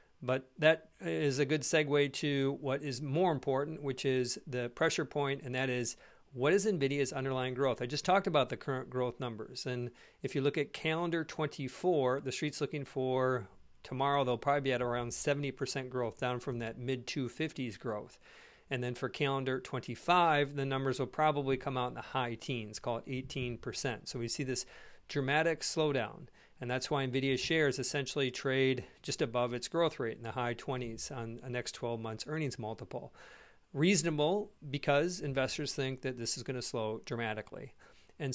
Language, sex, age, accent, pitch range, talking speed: English, male, 50-69, American, 125-145 Hz, 185 wpm